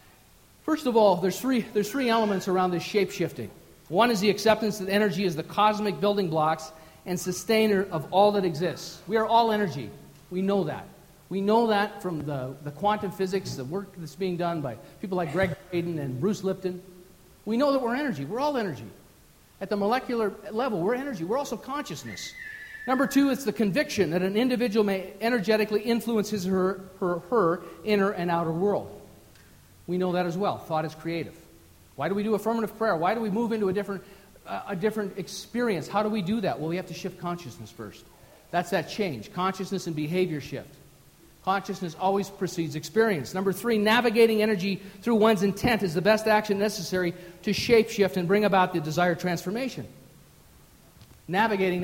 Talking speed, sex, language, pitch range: 190 wpm, male, English, 175-215 Hz